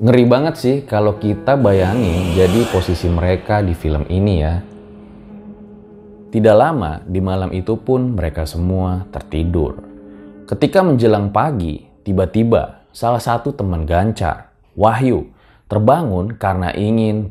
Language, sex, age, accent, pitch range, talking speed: Indonesian, male, 20-39, native, 90-125 Hz, 120 wpm